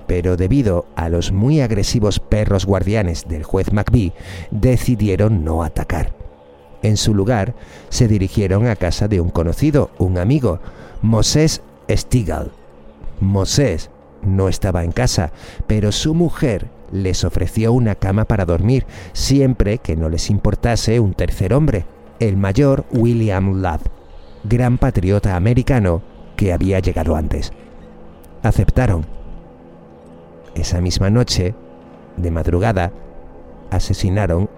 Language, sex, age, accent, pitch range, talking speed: Spanish, male, 50-69, Spanish, 80-110 Hz, 120 wpm